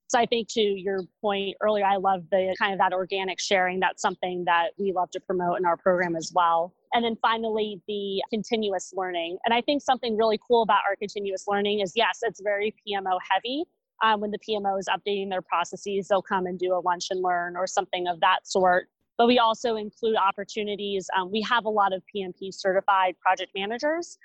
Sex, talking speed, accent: female, 210 wpm, American